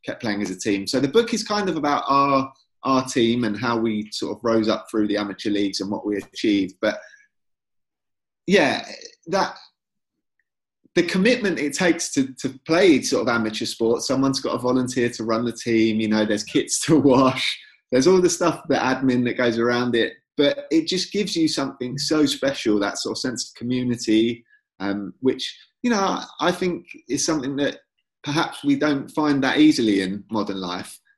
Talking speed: 190 wpm